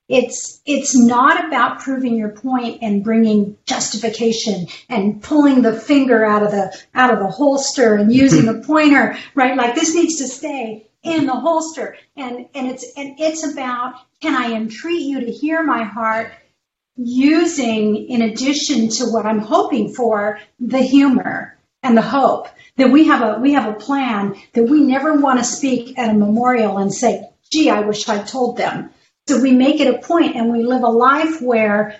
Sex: female